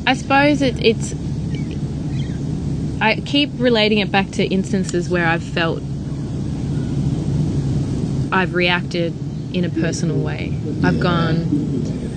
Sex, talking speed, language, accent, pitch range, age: female, 105 wpm, English, Australian, 140-195 Hz, 20-39